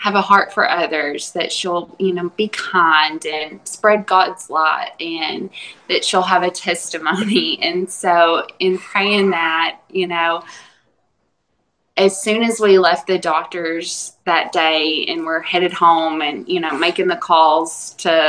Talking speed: 160 wpm